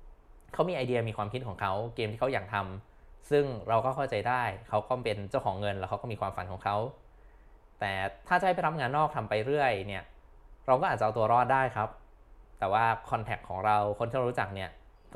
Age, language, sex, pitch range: 20-39, Thai, male, 105-130 Hz